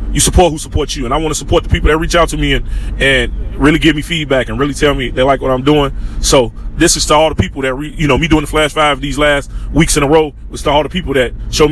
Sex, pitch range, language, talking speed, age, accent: male, 120-150 Hz, English, 310 wpm, 20-39, American